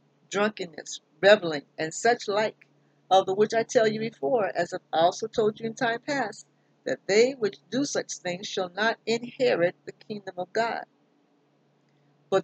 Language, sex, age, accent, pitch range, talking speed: English, female, 60-79, American, 170-225 Hz, 165 wpm